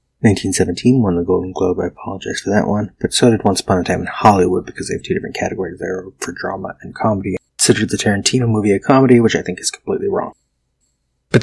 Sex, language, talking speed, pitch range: male, English, 230 wpm, 90-110 Hz